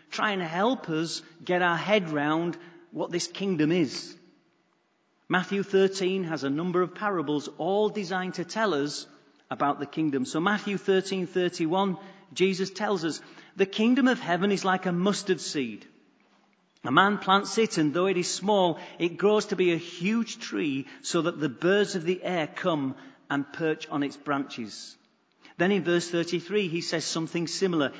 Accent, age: British, 40-59